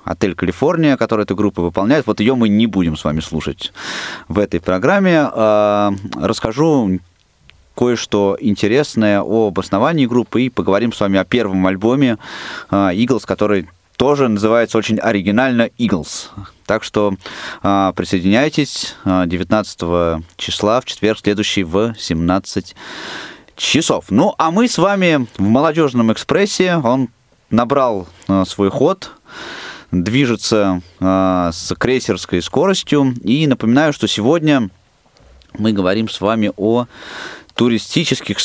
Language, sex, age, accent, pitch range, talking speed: Russian, male, 20-39, native, 95-120 Hz, 115 wpm